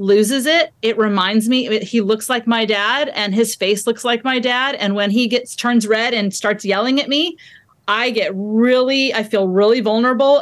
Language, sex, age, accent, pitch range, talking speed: English, female, 30-49, American, 200-245 Hz, 200 wpm